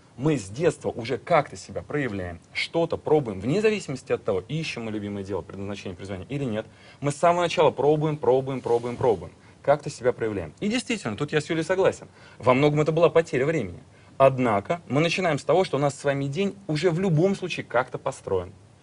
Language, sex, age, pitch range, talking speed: Russian, male, 30-49, 120-170 Hz, 200 wpm